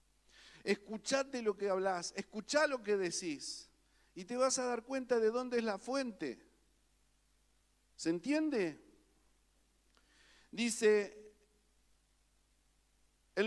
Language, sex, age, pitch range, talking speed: Spanish, male, 50-69, 205-265 Hz, 100 wpm